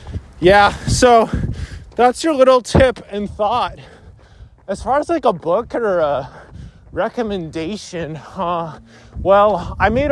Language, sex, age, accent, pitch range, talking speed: English, male, 20-39, American, 155-210 Hz, 125 wpm